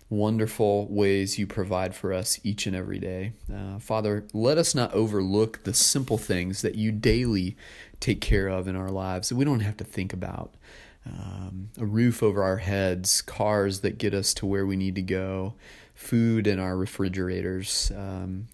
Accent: American